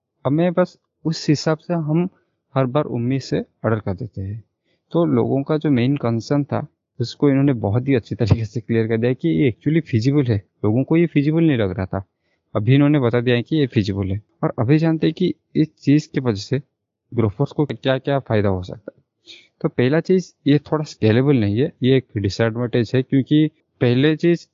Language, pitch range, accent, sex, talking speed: Hindi, 110-140 Hz, native, male, 210 wpm